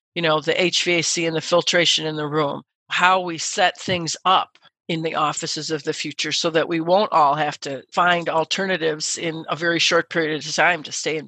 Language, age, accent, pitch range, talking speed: English, 50-69, American, 155-180 Hz, 215 wpm